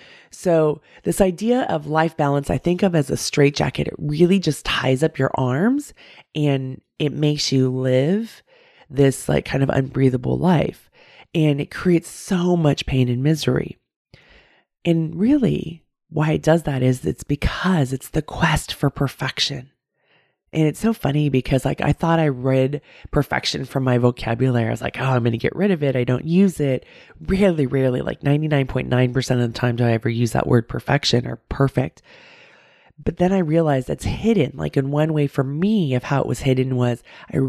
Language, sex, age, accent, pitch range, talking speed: English, female, 20-39, American, 130-160 Hz, 185 wpm